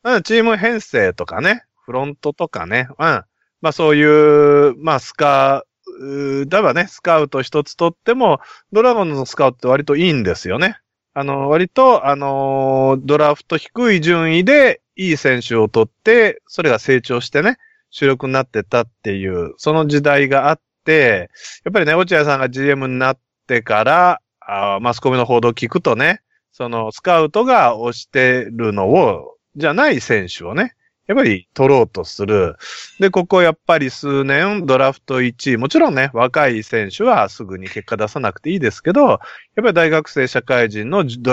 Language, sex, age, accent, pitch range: Japanese, male, 30-49, native, 120-175 Hz